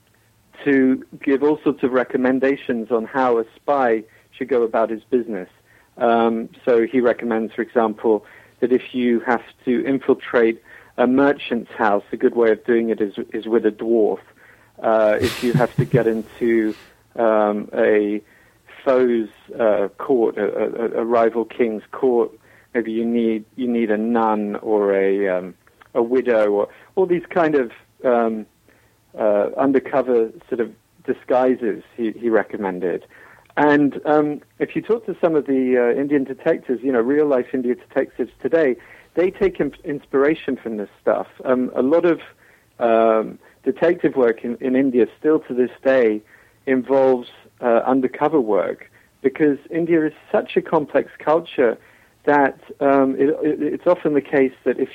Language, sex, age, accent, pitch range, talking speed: English, male, 50-69, British, 110-135 Hz, 155 wpm